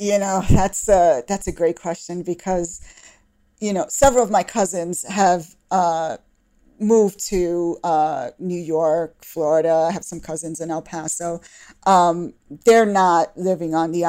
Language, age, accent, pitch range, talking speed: English, 40-59, American, 160-185 Hz, 155 wpm